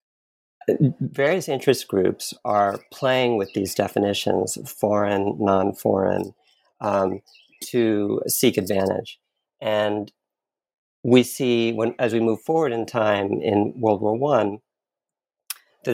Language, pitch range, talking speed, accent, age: English, 100-120 Hz, 110 wpm, American, 50-69